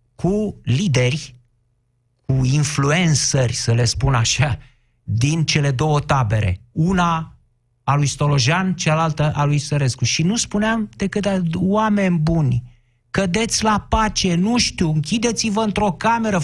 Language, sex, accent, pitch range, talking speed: Romanian, male, native, 125-190 Hz, 125 wpm